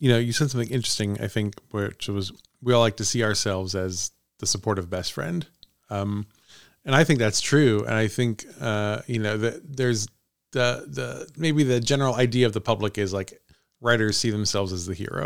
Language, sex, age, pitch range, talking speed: English, male, 30-49, 105-130 Hz, 205 wpm